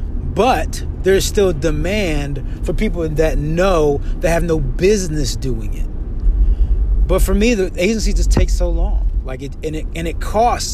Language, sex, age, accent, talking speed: English, male, 30-49, American, 170 wpm